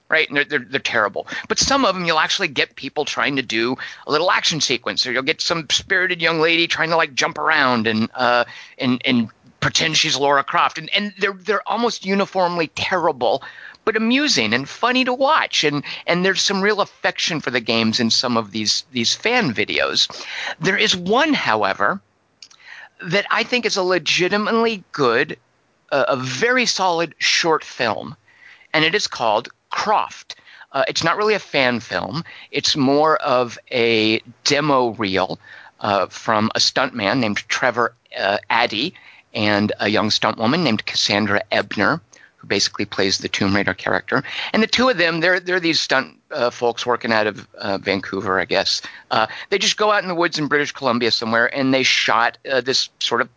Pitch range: 120-190 Hz